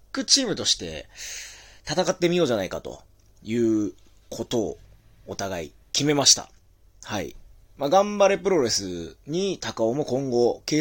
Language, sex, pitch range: Japanese, male, 95-145 Hz